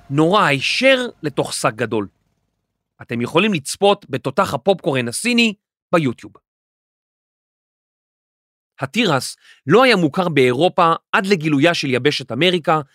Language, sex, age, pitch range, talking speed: Hebrew, male, 40-59, 135-200 Hz, 100 wpm